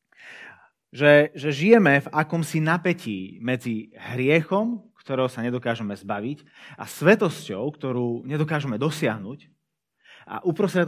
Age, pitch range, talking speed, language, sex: 30-49, 110-155 Hz, 105 wpm, Slovak, male